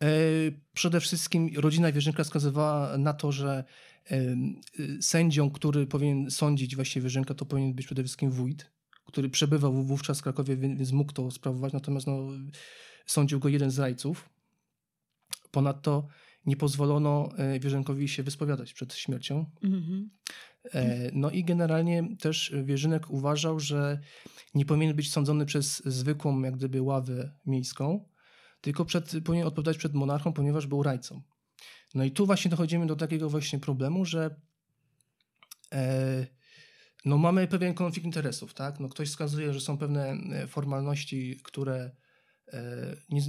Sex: male